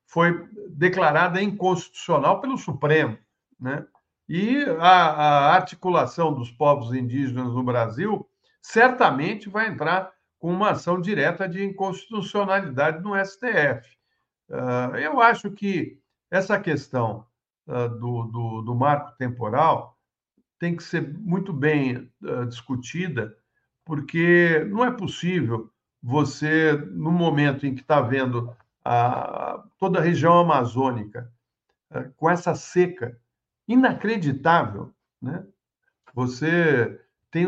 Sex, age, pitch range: male, 60-79, 130-205 Hz